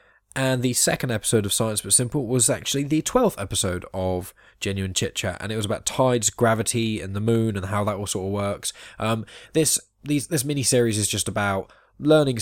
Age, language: 10-29, English